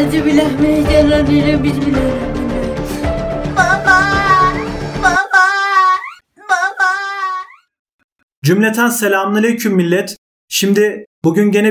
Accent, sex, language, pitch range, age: native, male, Turkish, 180-235 Hz, 30-49